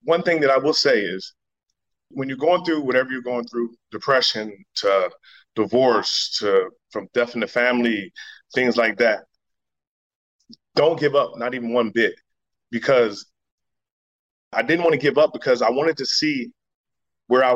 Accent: American